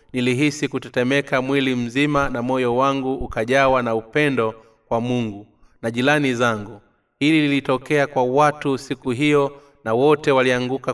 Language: Swahili